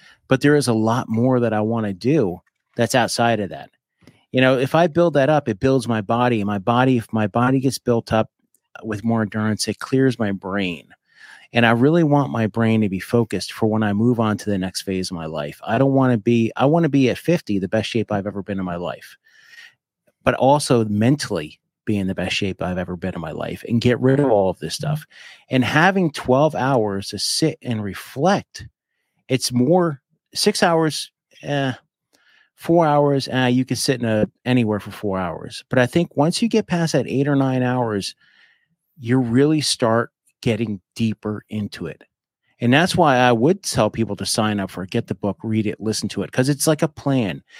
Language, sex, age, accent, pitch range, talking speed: English, male, 30-49, American, 110-140 Hz, 220 wpm